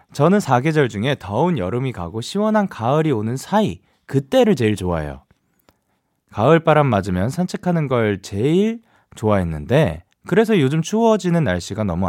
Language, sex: Korean, male